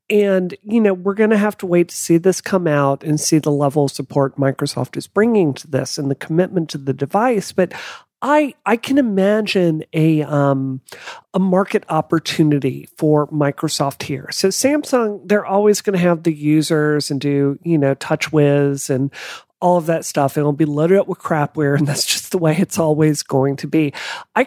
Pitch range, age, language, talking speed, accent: 150-195 Hz, 40-59, English, 195 wpm, American